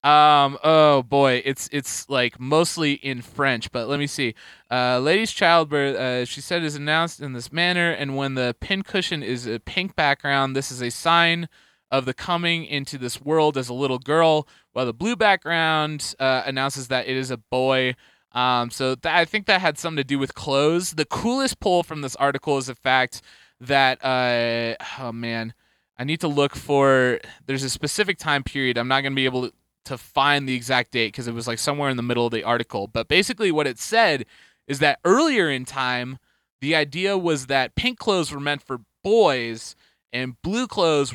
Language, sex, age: English, male, 20-39